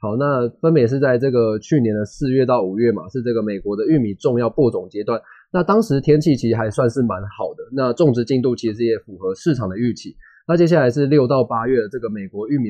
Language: Chinese